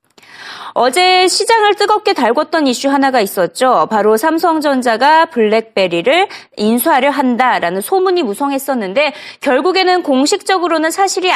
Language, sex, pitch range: Korean, female, 230-350 Hz